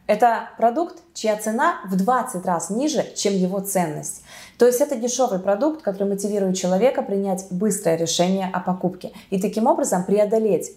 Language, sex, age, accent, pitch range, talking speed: Russian, female, 20-39, native, 185-235 Hz, 155 wpm